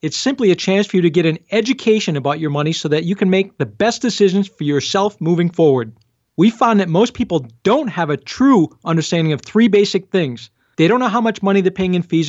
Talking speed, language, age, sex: 240 wpm, English, 40-59, male